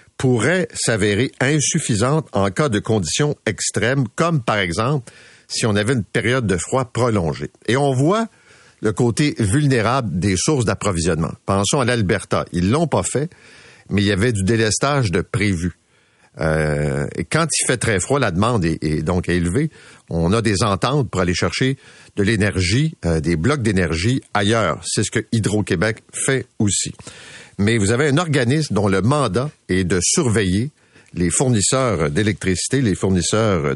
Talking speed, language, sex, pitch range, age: 165 wpm, French, male, 95-135 Hz, 50-69